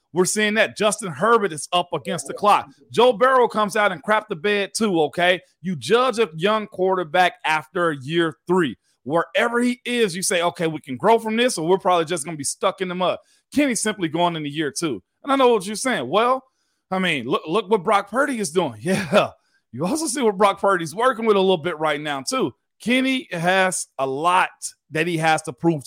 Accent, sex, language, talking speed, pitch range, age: American, male, English, 225 wpm, 165-220 Hz, 40-59